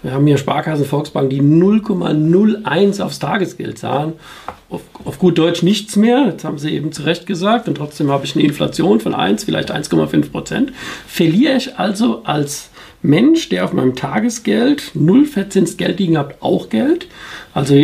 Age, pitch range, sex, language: 50-69, 150-205 Hz, male, German